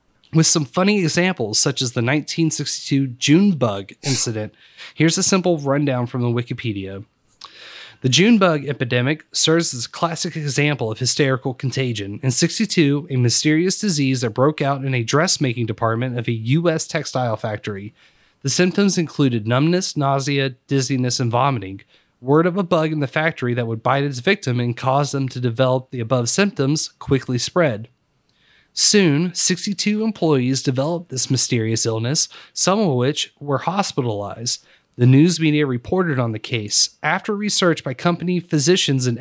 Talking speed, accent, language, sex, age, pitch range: 155 wpm, American, English, male, 30-49, 125-165 Hz